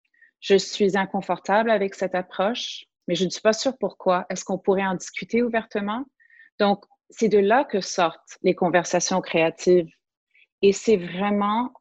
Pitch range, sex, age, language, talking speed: 185-220 Hz, female, 30-49, French, 160 wpm